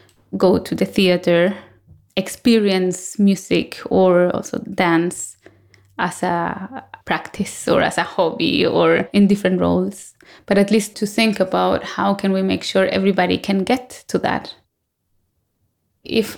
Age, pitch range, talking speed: 20-39, 170-210 Hz, 135 wpm